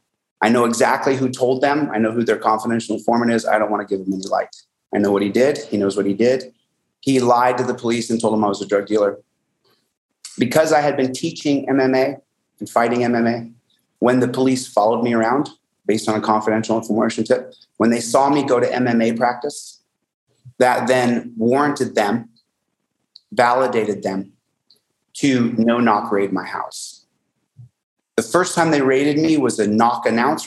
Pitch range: 110-125 Hz